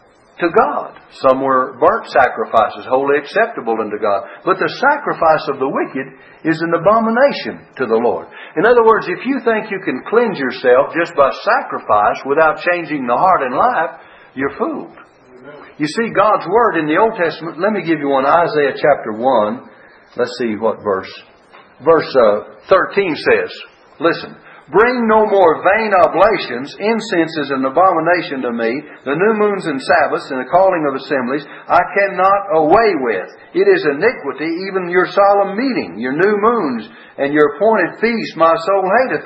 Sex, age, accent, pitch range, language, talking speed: male, 60-79, American, 160-225 Hz, English, 165 wpm